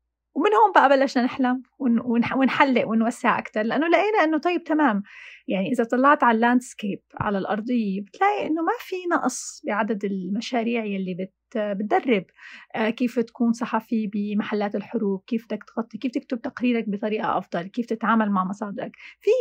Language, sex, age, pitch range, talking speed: Arabic, female, 30-49, 215-285 Hz, 145 wpm